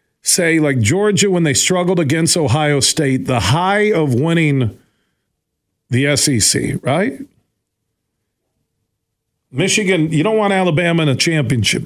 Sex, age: male, 50-69